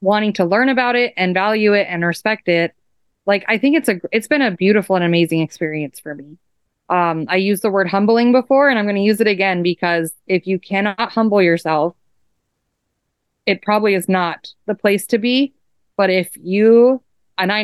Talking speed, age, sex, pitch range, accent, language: 195 wpm, 20-39, female, 170-210 Hz, American, English